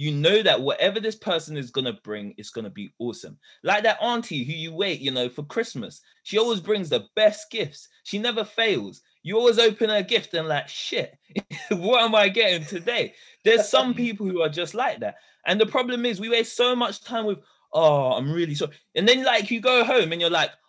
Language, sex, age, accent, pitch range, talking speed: English, male, 20-39, British, 150-220 Hz, 225 wpm